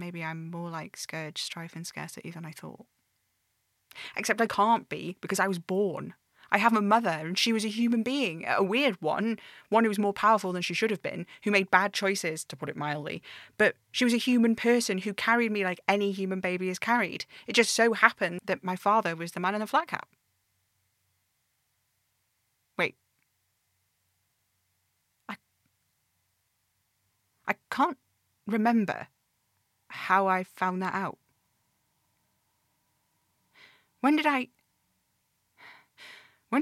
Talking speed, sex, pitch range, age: 150 wpm, female, 160-235 Hz, 30-49